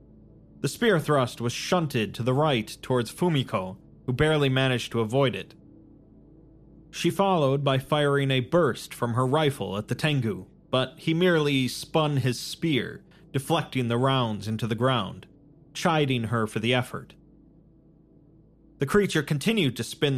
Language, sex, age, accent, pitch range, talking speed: English, male, 30-49, American, 120-155 Hz, 150 wpm